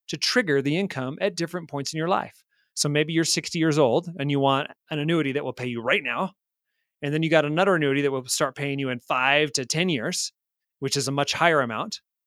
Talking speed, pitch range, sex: 240 wpm, 135-165 Hz, male